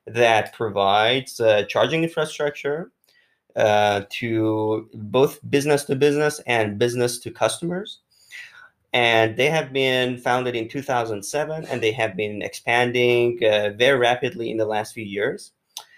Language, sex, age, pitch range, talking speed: English, male, 30-49, 110-140 Hz, 115 wpm